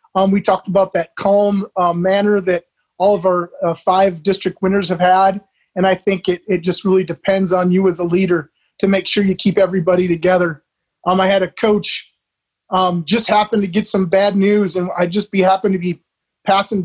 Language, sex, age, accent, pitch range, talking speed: English, male, 30-49, American, 180-200 Hz, 210 wpm